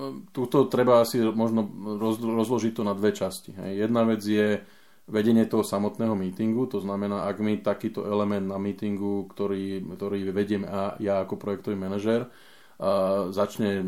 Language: Slovak